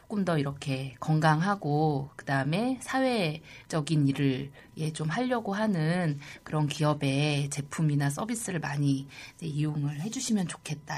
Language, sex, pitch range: Korean, female, 140-175 Hz